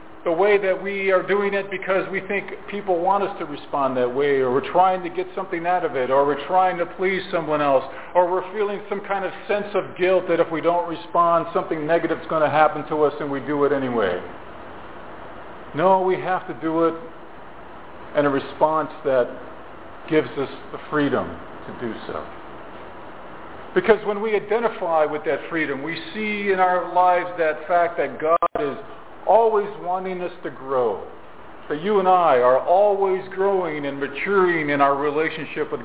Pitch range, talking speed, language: 160-200 Hz, 185 wpm, English